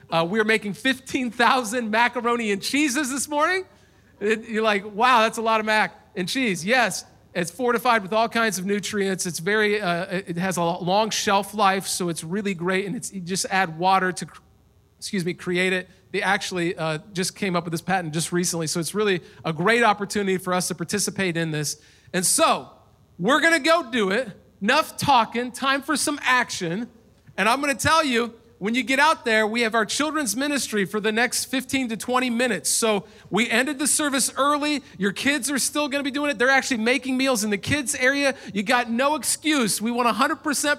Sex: male